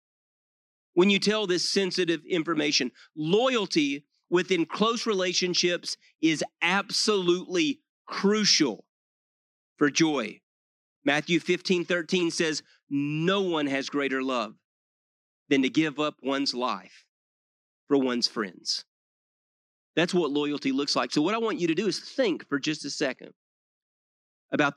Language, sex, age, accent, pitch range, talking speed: English, male, 30-49, American, 140-200 Hz, 125 wpm